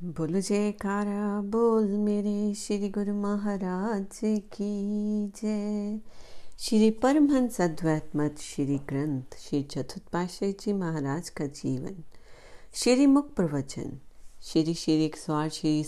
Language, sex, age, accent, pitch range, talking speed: Hindi, female, 40-59, native, 155-210 Hz, 110 wpm